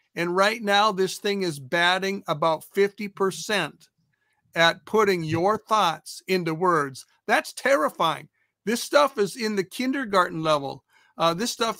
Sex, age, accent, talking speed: male, 50-69, American, 135 wpm